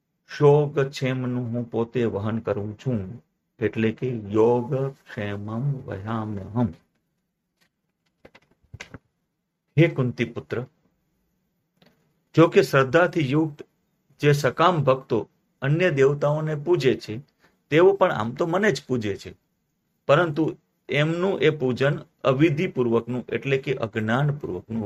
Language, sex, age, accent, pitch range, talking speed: Gujarati, male, 50-69, native, 115-160 Hz, 65 wpm